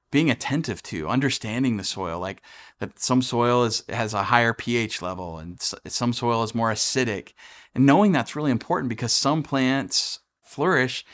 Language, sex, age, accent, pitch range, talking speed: English, male, 30-49, American, 105-130 Hz, 165 wpm